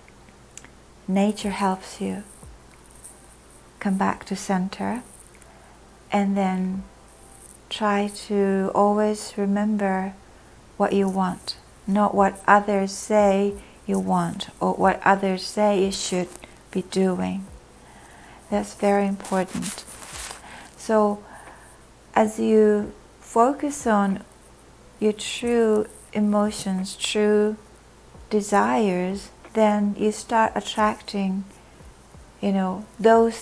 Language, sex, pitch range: Japanese, female, 190-210 Hz